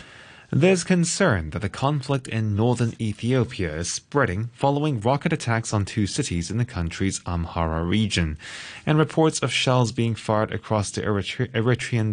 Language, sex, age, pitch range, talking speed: English, male, 20-39, 100-130 Hz, 150 wpm